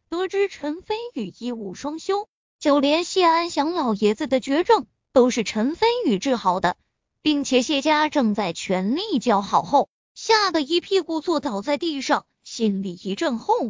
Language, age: Chinese, 20-39